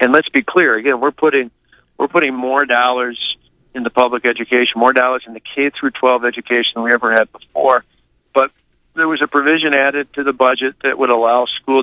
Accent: American